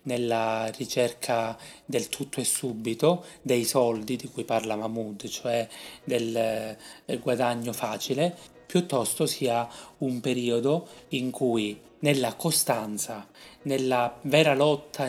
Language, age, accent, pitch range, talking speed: Italian, 30-49, native, 115-140 Hz, 110 wpm